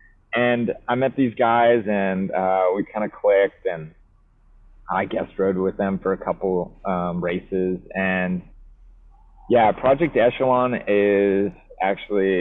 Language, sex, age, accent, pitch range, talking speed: English, male, 20-39, American, 95-110 Hz, 135 wpm